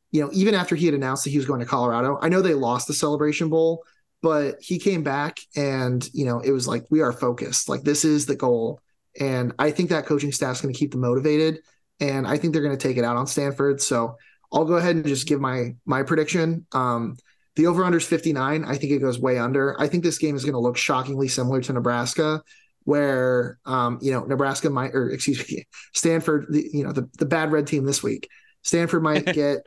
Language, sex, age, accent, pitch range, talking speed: English, male, 30-49, American, 130-155 Hz, 235 wpm